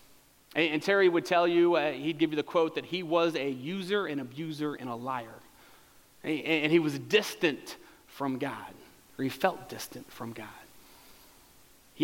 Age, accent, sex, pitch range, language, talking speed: 30-49, American, male, 145-200 Hz, English, 170 wpm